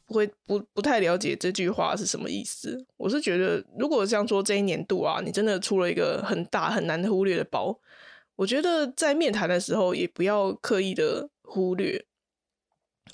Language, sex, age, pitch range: Chinese, female, 20-39, 185-250 Hz